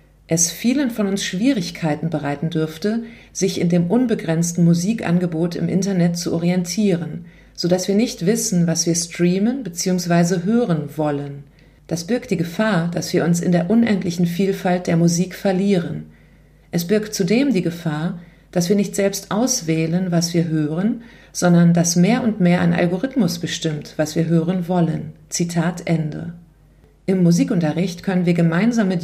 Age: 40-59